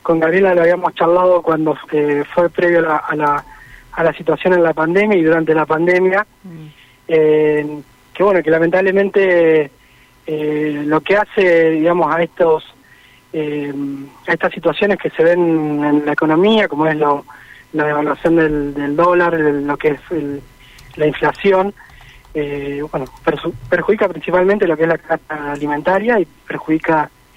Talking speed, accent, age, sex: 155 wpm, Argentinian, 20-39, male